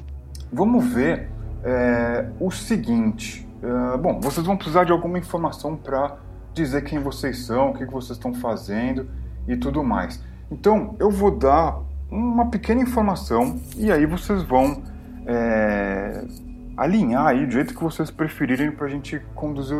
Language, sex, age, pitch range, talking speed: Portuguese, male, 20-39, 110-190 Hz, 150 wpm